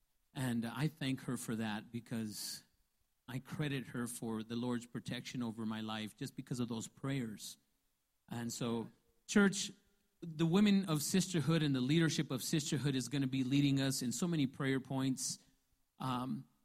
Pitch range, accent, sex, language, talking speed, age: 130-160 Hz, American, male, English, 165 wpm, 40-59